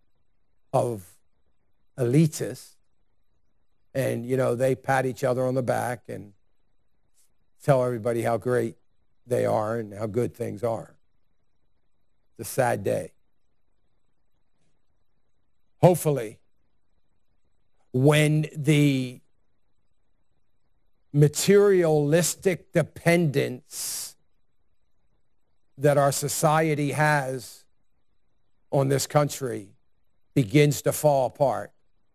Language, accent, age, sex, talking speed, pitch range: English, American, 50-69, male, 80 wpm, 100-140 Hz